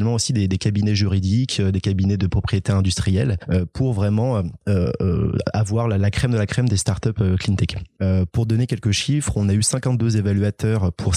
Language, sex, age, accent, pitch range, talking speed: French, male, 20-39, French, 95-115 Hz, 170 wpm